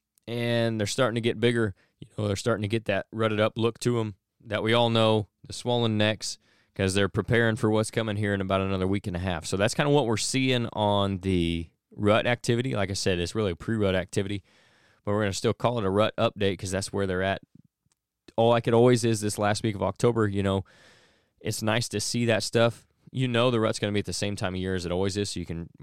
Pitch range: 95-110 Hz